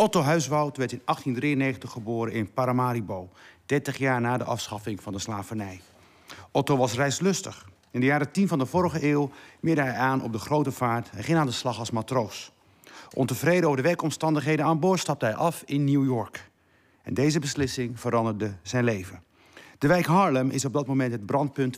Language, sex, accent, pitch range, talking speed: Dutch, male, Dutch, 110-140 Hz, 185 wpm